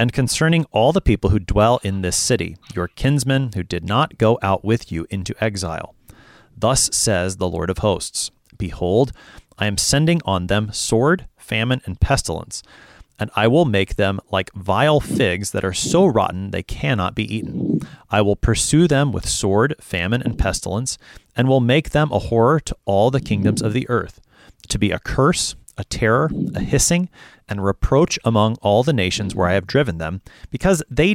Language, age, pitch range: English, 30-49, 100-140 Hz